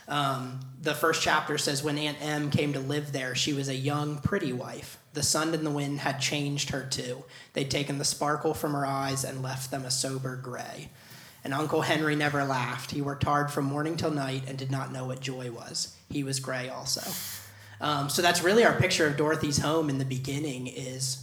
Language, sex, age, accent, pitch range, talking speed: English, male, 30-49, American, 130-150 Hz, 215 wpm